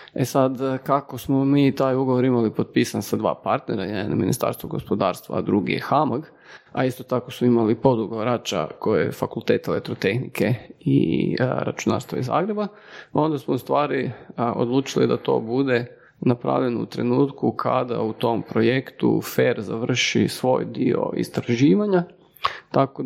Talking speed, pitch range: 145 wpm, 120-145 Hz